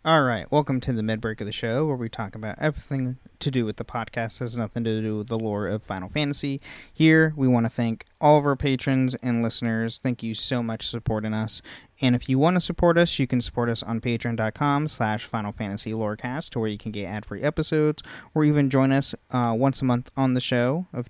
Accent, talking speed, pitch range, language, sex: American, 230 wpm, 115-145 Hz, English, male